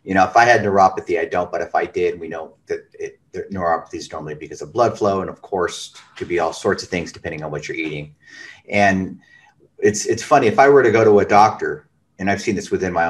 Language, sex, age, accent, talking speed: English, male, 40-59, American, 250 wpm